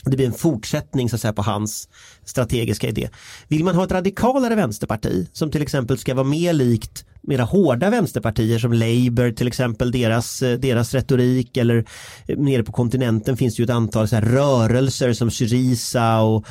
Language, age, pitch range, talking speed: Swedish, 30-49, 110-135 Hz, 180 wpm